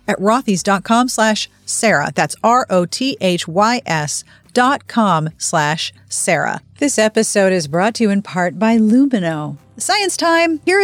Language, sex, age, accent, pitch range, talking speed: English, female, 40-59, American, 175-255 Hz, 125 wpm